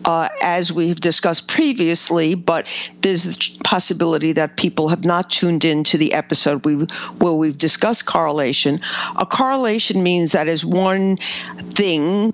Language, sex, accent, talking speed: English, female, American, 140 wpm